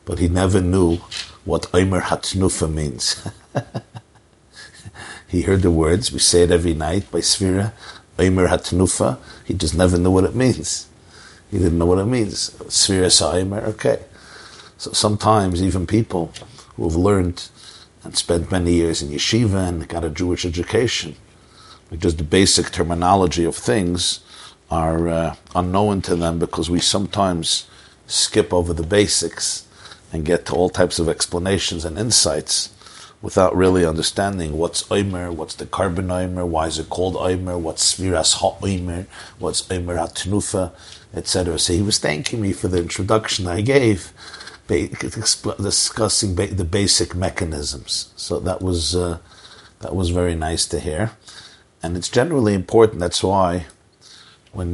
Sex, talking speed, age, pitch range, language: male, 145 wpm, 50-69, 85-100 Hz, English